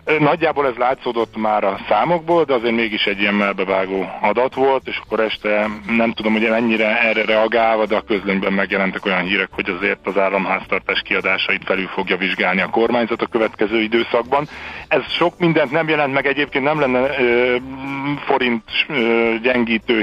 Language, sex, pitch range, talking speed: Hungarian, male, 105-135 Hz, 160 wpm